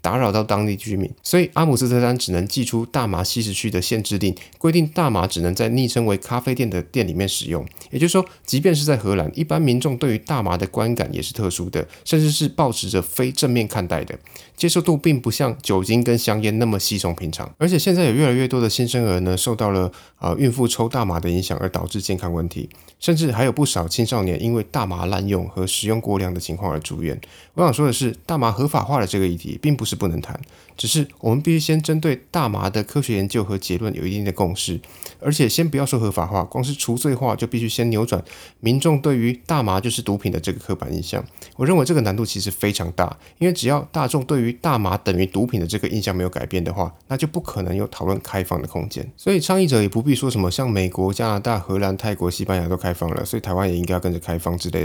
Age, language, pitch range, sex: 20-39, Chinese, 95-130 Hz, male